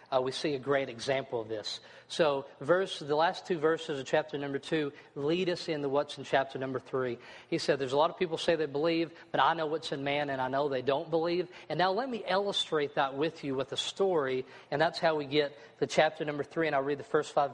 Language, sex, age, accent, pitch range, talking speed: English, male, 50-69, American, 140-180 Hz, 255 wpm